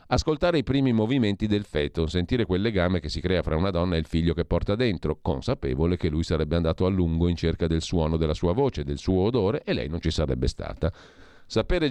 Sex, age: male, 40-59